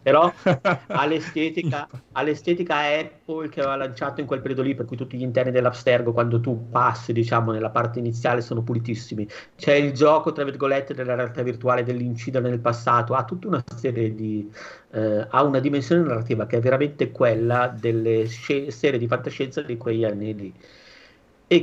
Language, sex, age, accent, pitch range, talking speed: Italian, male, 50-69, native, 110-130 Hz, 165 wpm